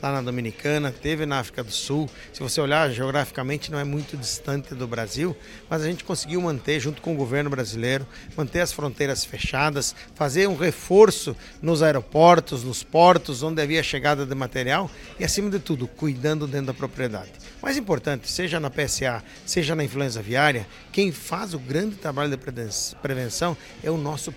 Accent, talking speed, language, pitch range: Brazilian, 175 wpm, Portuguese, 135-170 Hz